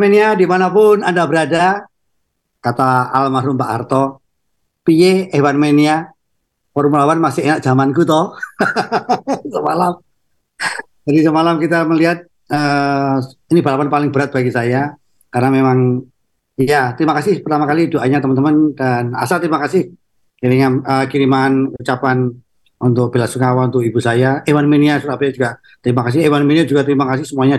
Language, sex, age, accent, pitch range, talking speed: Indonesian, male, 40-59, native, 120-145 Hz, 130 wpm